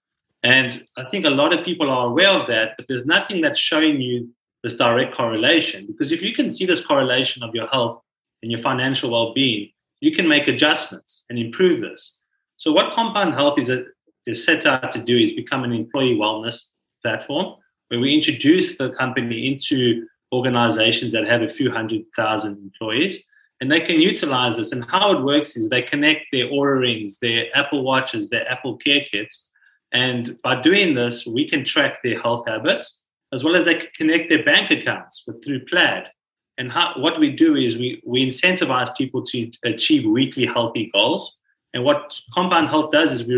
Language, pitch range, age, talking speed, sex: English, 120-165 Hz, 30-49, 190 wpm, male